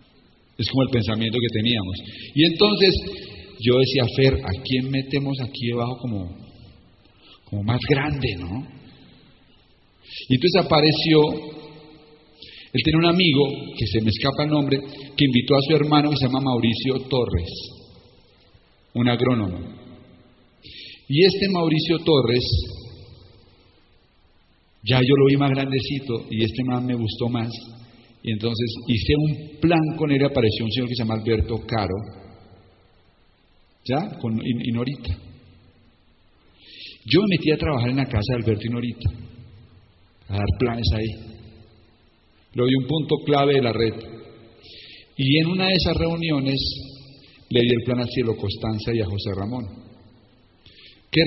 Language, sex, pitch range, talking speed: Spanish, male, 110-140 Hz, 145 wpm